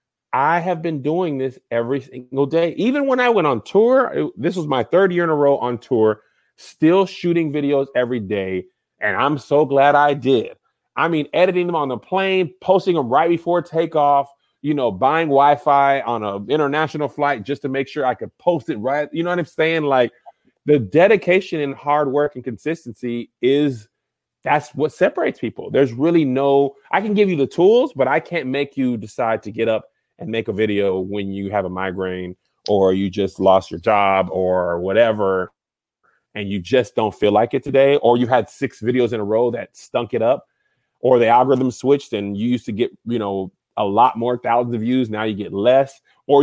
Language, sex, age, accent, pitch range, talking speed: English, male, 30-49, American, 115-155 Hz, 205 wpm